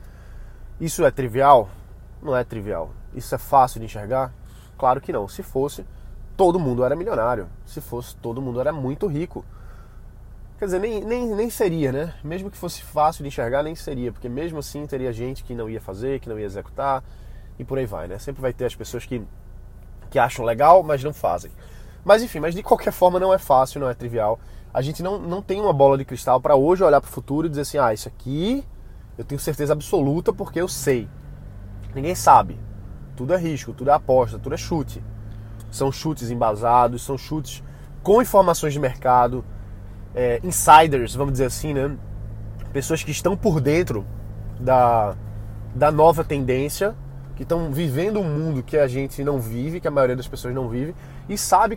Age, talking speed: 20-39, 190 wpm